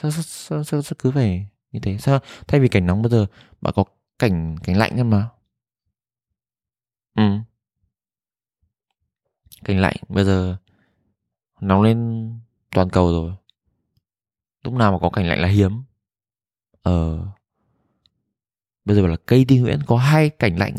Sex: male